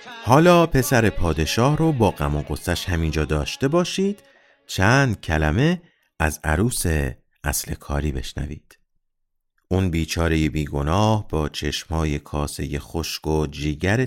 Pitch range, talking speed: 75-115 Hz, 115 wpm